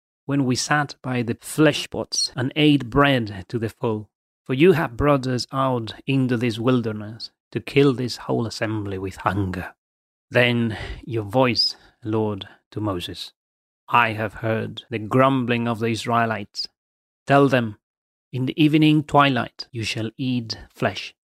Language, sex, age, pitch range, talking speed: English, male, 30-49, 105-135 Hz, 150 wpm